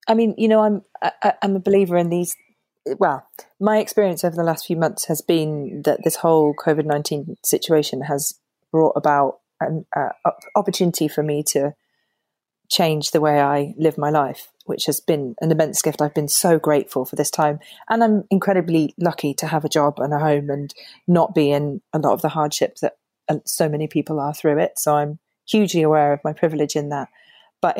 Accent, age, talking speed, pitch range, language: British, 20-39, 200 wpm, 150-185 Hz, English